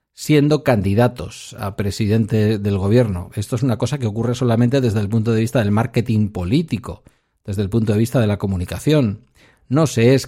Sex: male